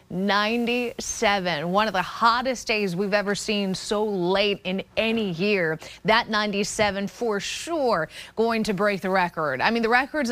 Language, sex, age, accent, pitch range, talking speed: English, female, 30-49, American, 195-230 Hz, 155 wpm